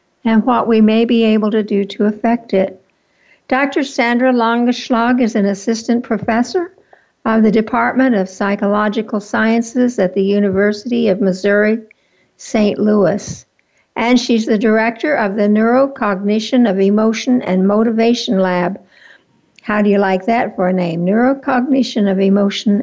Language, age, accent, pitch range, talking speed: English, 60-79, American, 200-240 Hz, 140 wpm